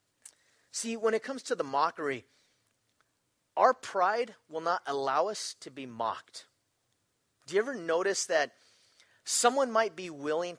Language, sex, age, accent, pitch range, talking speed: English, male, 30-49, American, 140-205 Hz, 140 wpm